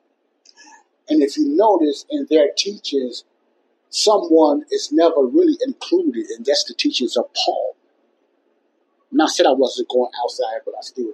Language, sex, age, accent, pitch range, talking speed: English, male, 50-69, American, 295-425 Hz, 150 wpm